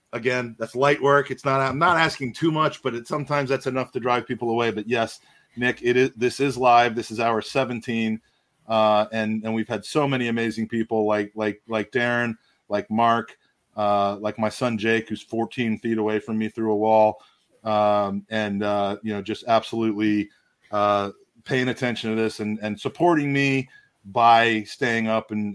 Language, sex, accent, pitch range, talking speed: English, male, American, 110-125 Hz, 190 wpm